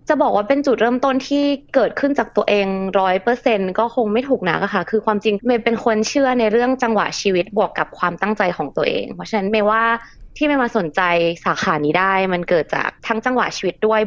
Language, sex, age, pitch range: Thai, female, 20-39, 180-240 Hz